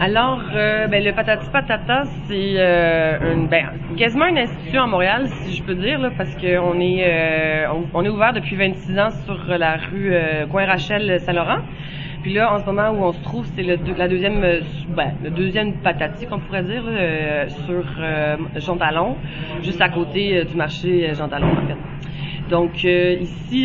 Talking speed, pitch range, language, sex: 200 wpm, 155-190 Hz, French, female